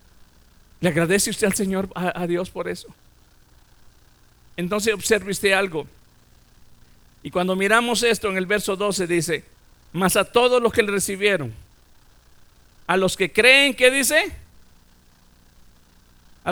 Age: 50-69